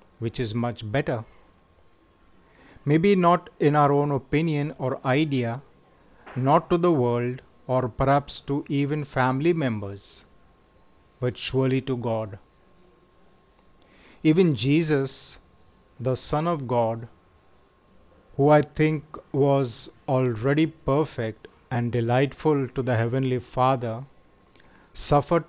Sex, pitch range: male, 120-145 Hz